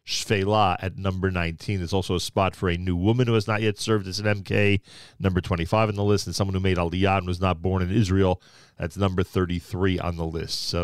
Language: English